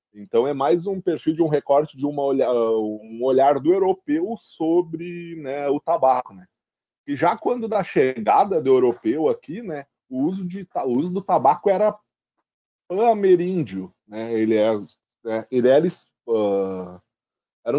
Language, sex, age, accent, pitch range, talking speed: Portuguese, male, 20-39, Brazilian, 130-195 Hz, 160 wpm